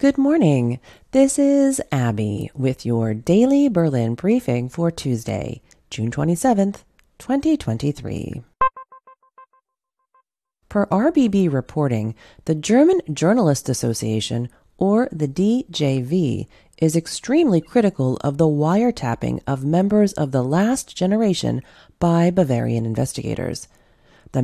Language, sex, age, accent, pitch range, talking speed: English, female, 30-49, American, 130-220 Hz, 100 wpm